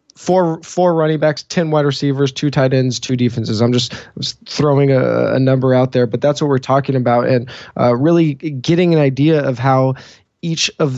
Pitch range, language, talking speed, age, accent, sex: 125-145 Hz, English, 210 wpm, 20-39, American, male